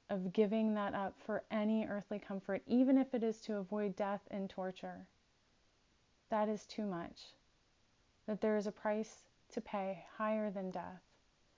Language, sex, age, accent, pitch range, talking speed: English, female, 30-49, American, 185-215 Hz, 160 wpm